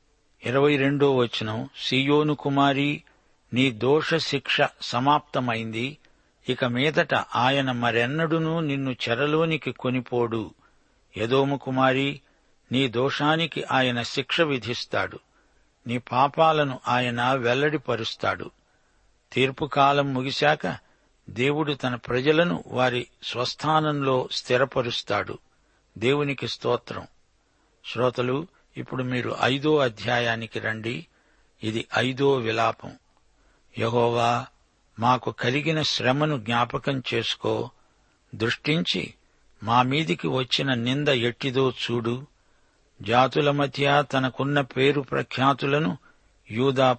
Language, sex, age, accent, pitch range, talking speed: Telugu, male, 60-79, native, 120-145 Hz, 80 wpm